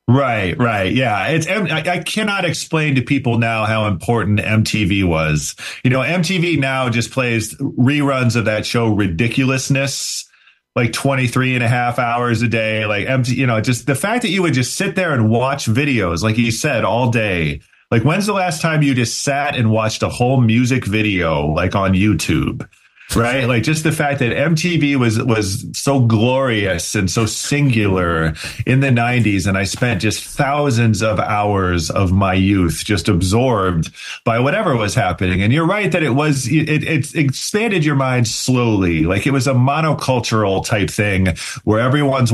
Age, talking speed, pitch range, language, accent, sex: 40-59, 175 wpm, 100-135 Hz, English, American, male